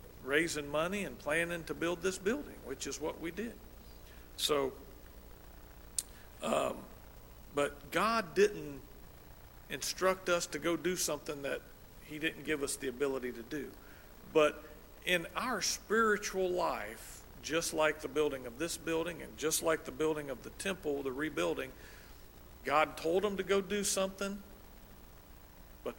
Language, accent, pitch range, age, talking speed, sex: English, American, 125-165 Hz, 50-69, 145 wpm, male